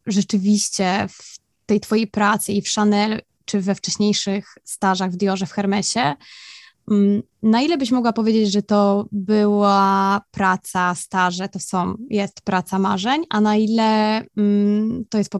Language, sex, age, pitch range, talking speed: Polish, female, 20-39, 190-215 Hz, 150 wpm